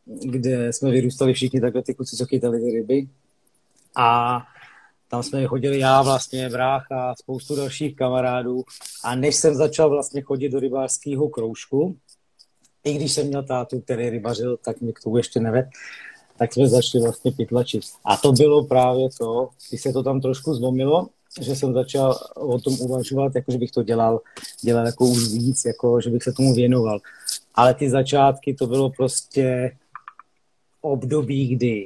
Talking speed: 165 wpm